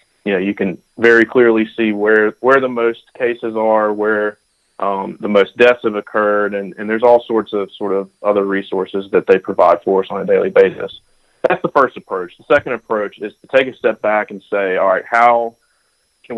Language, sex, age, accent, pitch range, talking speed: English, male, 30-49, American, 105-115 Hz, 210 wpm